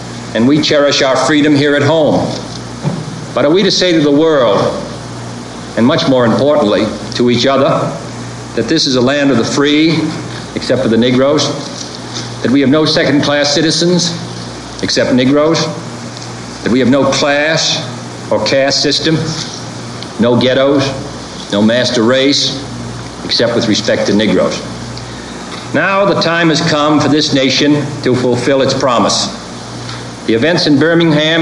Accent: American